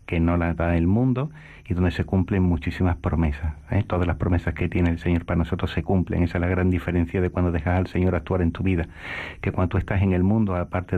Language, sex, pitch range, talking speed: Spanish, male, 90-110 Hz, 250 wpm